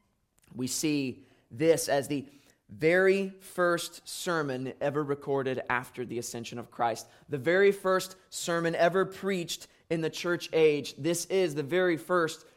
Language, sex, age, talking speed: English, male, 20-39, 145 wpm